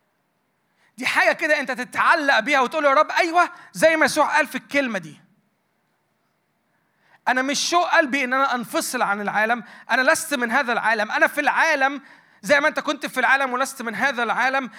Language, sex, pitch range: Arabic, male, 165-230 Hz